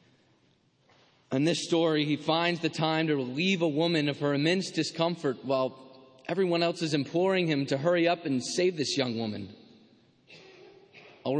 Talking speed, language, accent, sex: 160 wpm, English, American, male